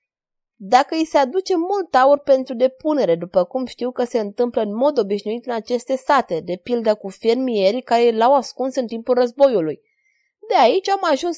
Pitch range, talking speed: 230-305 Hz, 180 wpm